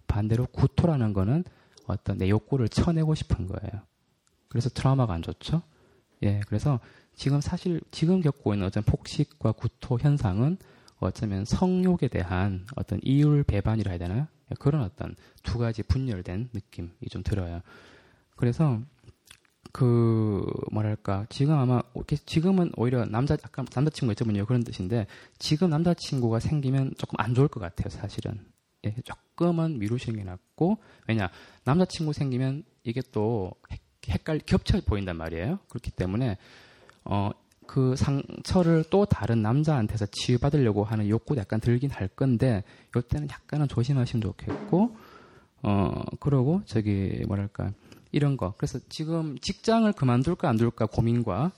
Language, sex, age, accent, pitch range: Korean, male, 20-39, native, 105-145 Hz